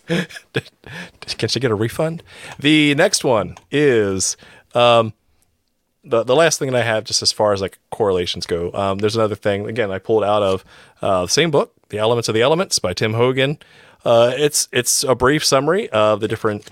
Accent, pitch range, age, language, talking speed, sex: American, 95-115 Hz, 30-49, English, 195 wpm, male